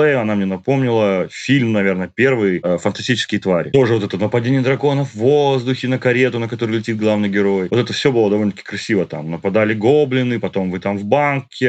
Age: 30-49